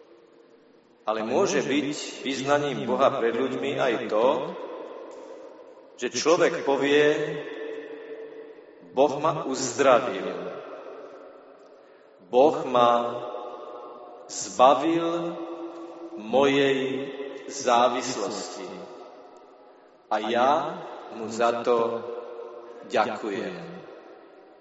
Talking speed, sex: 65 wpm, male